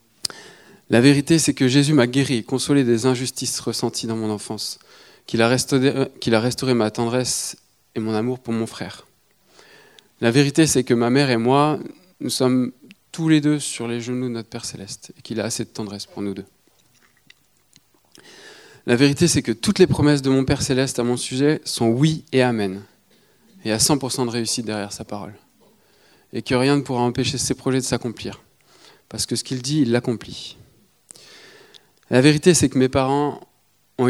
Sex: male